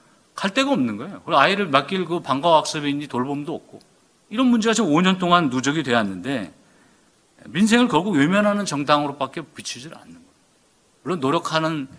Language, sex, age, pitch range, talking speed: English, male, 50-69, 130-190 Hz, 135 wpm